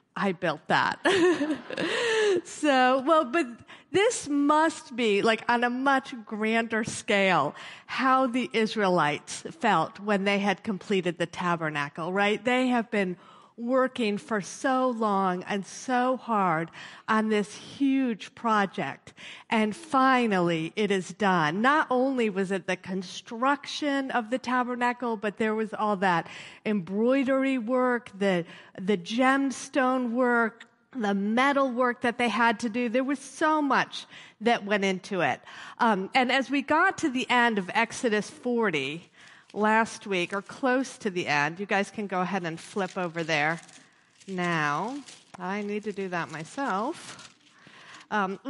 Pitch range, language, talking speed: 190-255 Hz, English, 145 wpm